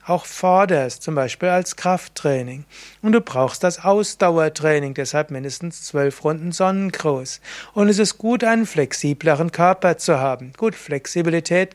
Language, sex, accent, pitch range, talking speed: German, male, German, 150-185 Hz, 140 wpm